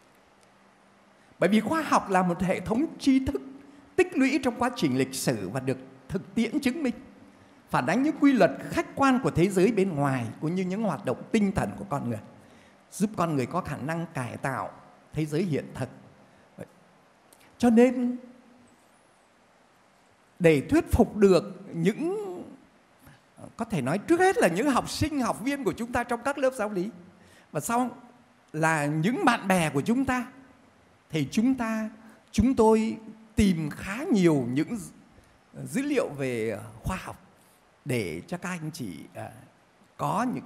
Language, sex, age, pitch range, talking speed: Vietnamese, male, 60-79, 155-250 Hz, 170 wpm